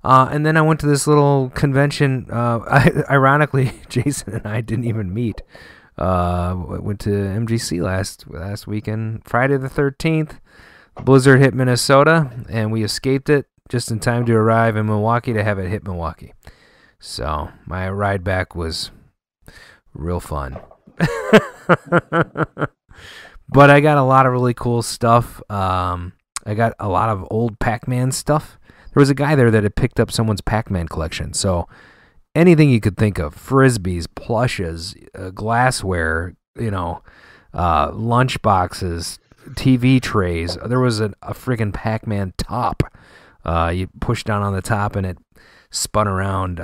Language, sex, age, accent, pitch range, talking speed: English, male, 30-49, American, 95-130 Hz, 155 wpm